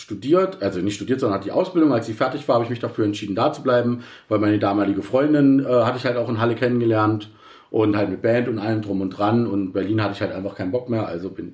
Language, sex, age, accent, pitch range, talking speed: German, male, 40-59, German, 105-130 Hz, 275 wpm